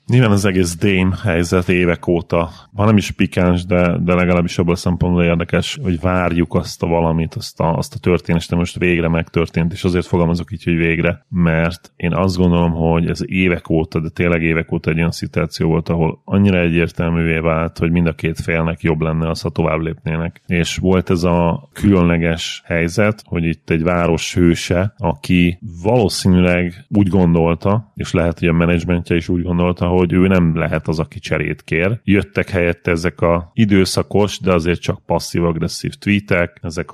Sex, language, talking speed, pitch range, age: male, Hungarian, 180 wpm, 85-95 Hz, 30-49